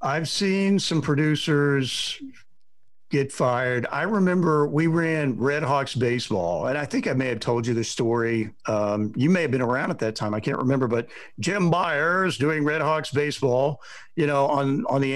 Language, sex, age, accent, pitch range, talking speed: English, male, 50-69, American, 125-155 Hz, 185 wpm